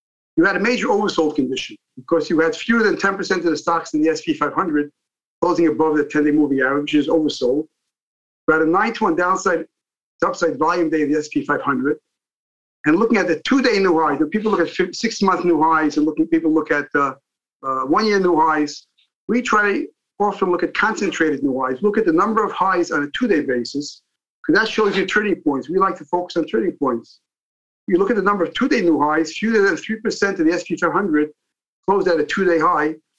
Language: English